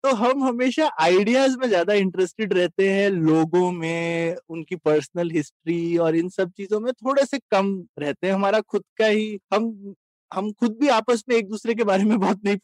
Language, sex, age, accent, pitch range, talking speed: Hindi, male, 20-39, native, 170-240 Hz, 195 wpm